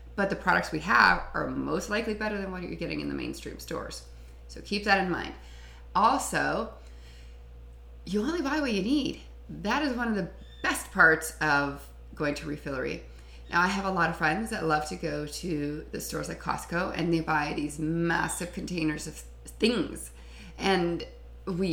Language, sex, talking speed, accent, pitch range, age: English, female, 180 wpm, American, 140-195 Hz, 30-49